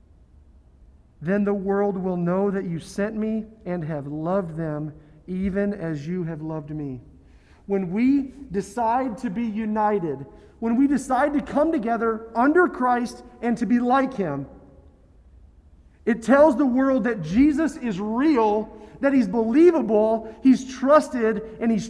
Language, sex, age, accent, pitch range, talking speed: English, male, 40-59, American, 155-260 Hz, 145 wpm